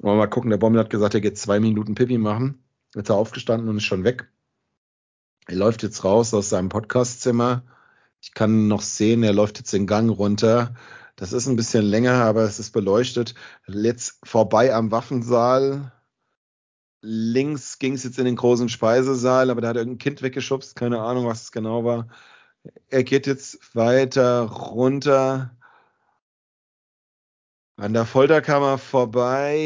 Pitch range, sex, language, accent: 115-130 Hz, male, German, German